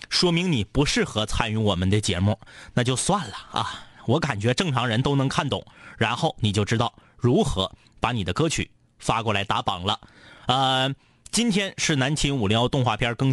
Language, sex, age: Chinese, male, 30-49